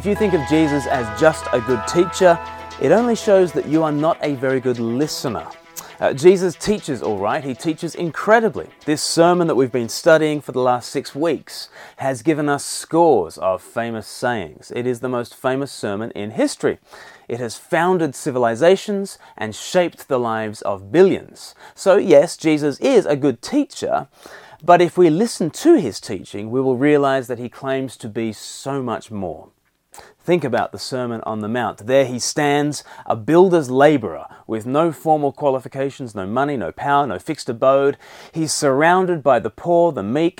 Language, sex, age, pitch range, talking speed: English, male, 30-49, 125-170 Hz, 180 wpm